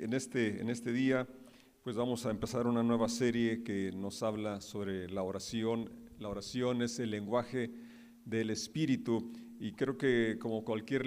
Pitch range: 110-130 Hz